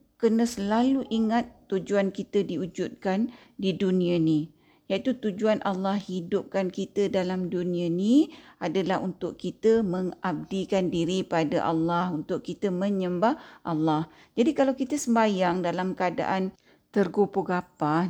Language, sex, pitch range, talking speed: Malay, female, 175-225 Hz, 115 wpm